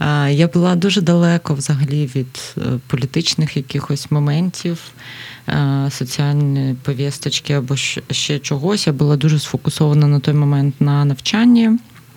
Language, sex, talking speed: Ukrainian, female, 115 wpm